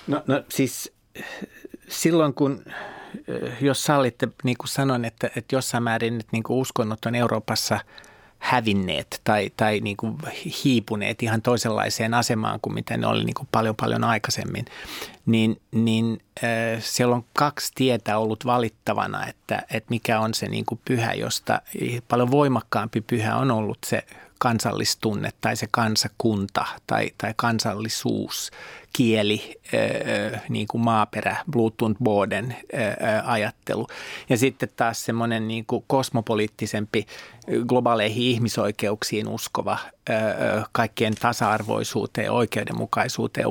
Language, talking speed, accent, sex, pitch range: Finnish, 130 wpm, native, male, 110-130 Hz